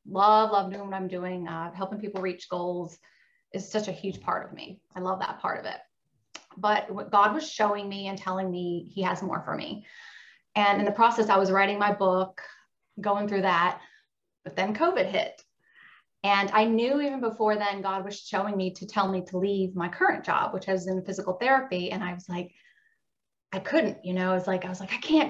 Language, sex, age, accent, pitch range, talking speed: English, female, 30-49, American, 190-215 Hz, 220 wpm